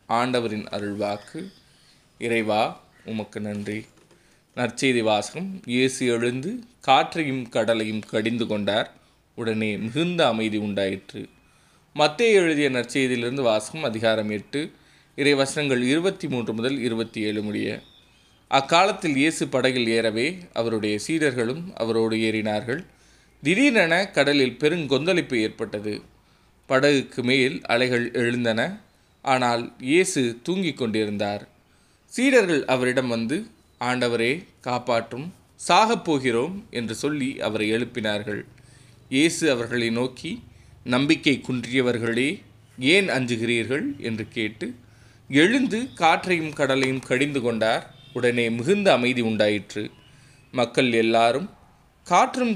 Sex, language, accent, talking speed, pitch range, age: male, Tamil, native, 90 wpm, 110-145 Hz, 20-39